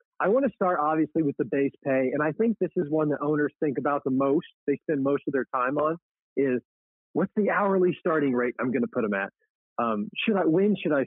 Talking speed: 250 wpm